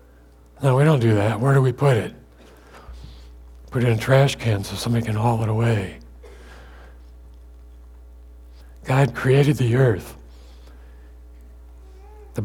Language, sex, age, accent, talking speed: English, male, 60-79, American, 130 wpm